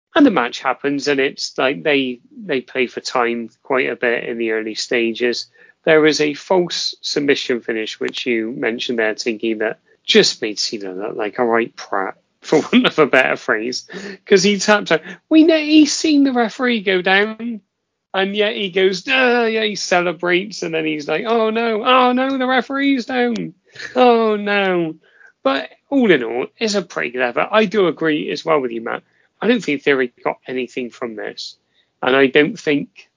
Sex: male